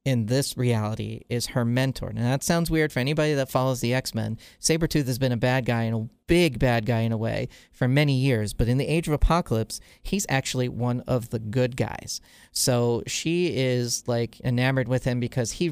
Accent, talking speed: American, 210 wpm